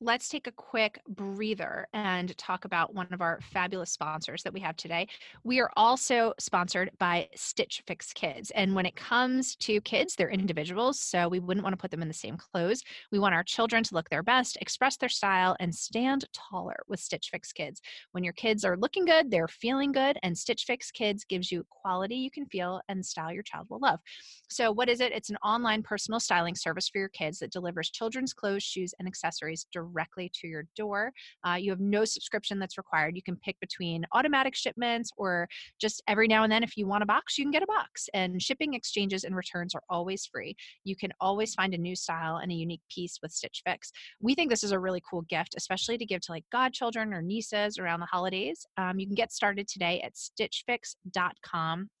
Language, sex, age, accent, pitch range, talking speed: English, female, 30-49, American, 175-230 Hz, 220 wpm